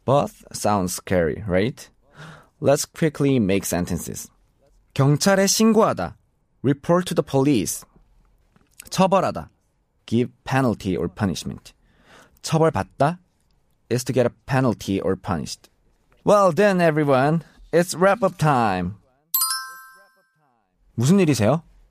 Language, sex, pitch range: Korean, male, 115-170 Hz